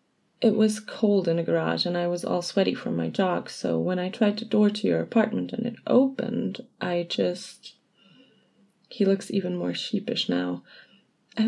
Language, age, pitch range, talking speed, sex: English, 20-39, 175-230 Hz, 185 wpm, female